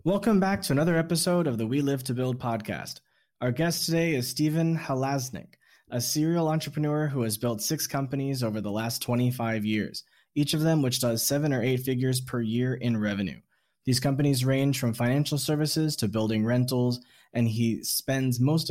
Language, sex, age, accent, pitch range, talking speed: English, male, 20-39, American, 120-145 Hz, 185 wpm